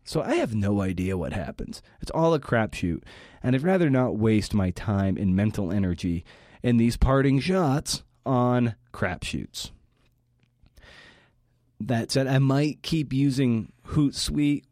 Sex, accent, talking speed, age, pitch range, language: male, American, 140 wpm, 30-49, 100-125 Hz, English